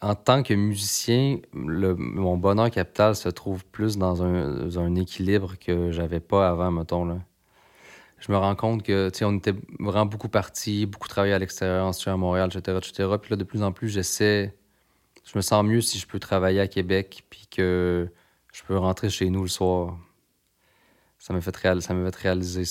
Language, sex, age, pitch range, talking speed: French, male, 30-49, 90-105 Hz, 200 wpm